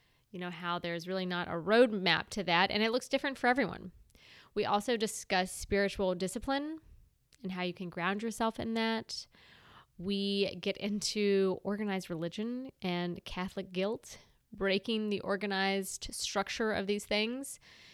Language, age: English, 20-39